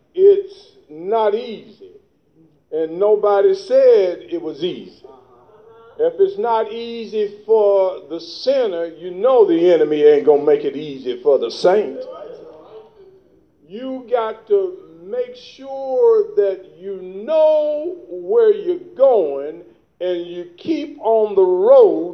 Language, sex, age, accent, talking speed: English, male, 50-69, American, 125 wpm